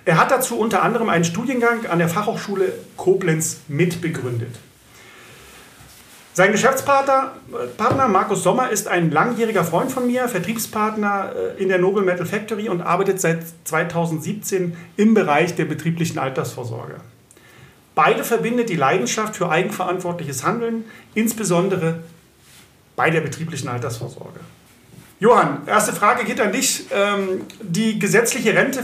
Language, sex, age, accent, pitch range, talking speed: German, male, 40-59, German, 165-210 Hz, 120 wpm